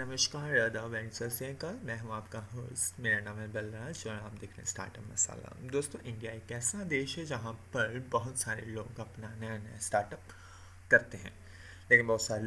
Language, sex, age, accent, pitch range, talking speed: Hindi, male, 20-39, native, 105-130 Hz, 185 wpm